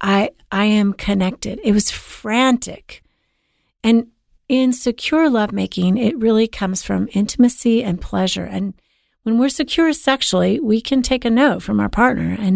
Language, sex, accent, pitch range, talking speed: English, female, American, 185-225 Hz, 155 wpm